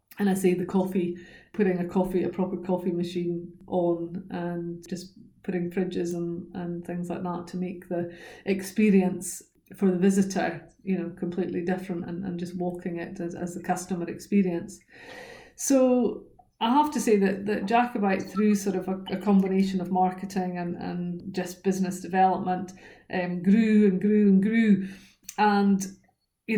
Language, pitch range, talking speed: English, 180-205 Hz, 165 wpm